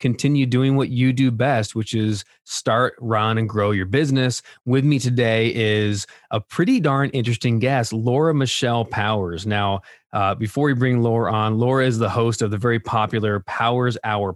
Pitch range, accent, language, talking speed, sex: 110-135 Hz, American, English, 180 wpm, male